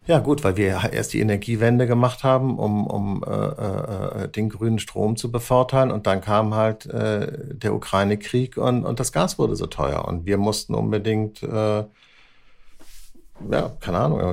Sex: male